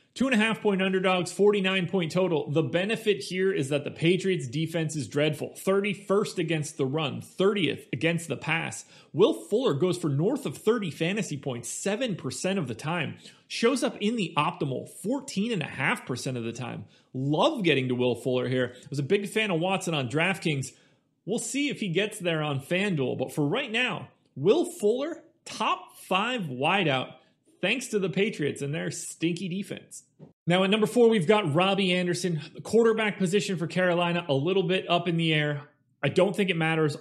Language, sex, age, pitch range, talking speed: English, male, 30-49, 150-195 Hz, 175 wpm